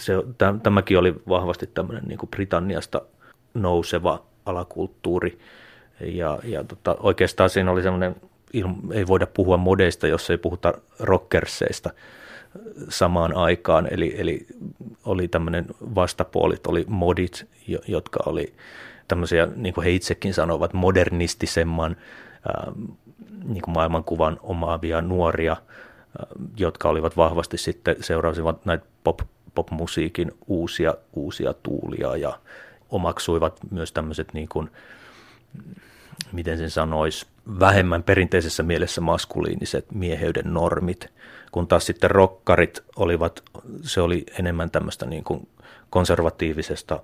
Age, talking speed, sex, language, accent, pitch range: 30-49, 105 wpm, male, Finnish, native, 80-95 Hz